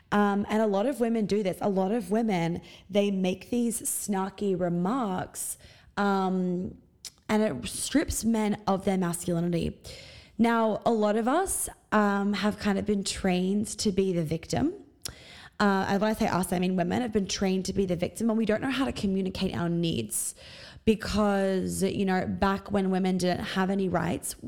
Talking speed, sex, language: 180 wpm, female, English